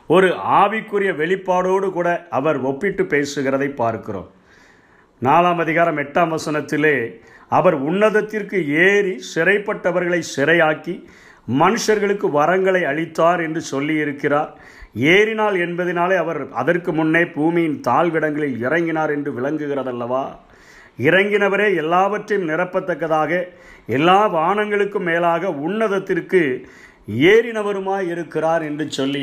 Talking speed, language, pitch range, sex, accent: 90 wpm, Tamil, 145-185 Hz, male, native